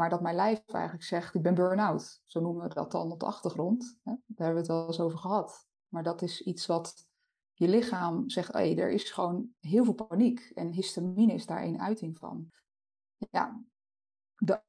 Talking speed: 200 wpm